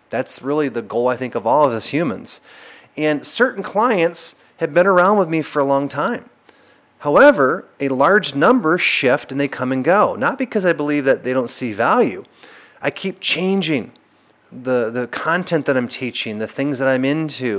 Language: English